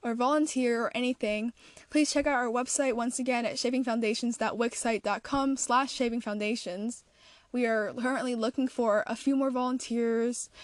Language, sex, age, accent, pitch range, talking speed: English, female, 10-29, American, 230-270 Hz, 135 wpm